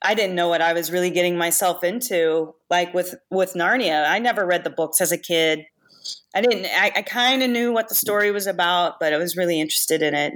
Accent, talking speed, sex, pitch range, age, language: American, 235 wpm, female, 160-195 Hz, 30-49, English